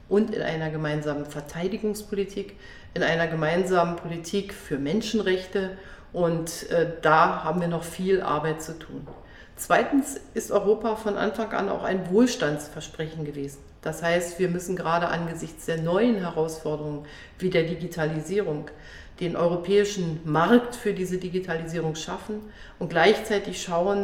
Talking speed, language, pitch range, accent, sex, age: 130 wpm, German, 155-195 Hz, German, female, 40-59